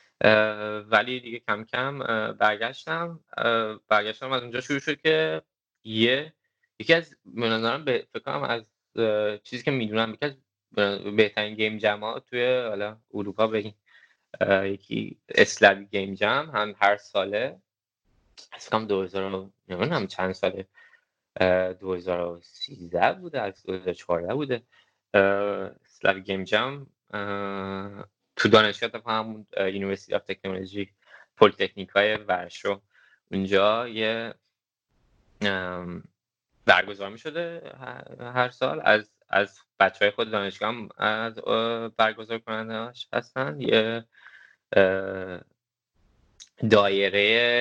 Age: 20-39